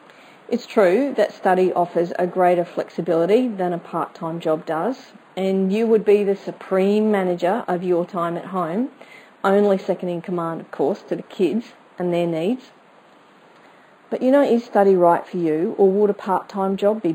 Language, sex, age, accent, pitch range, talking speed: English, female, 40-59, Australian, 175-215 Hz, 180 wpm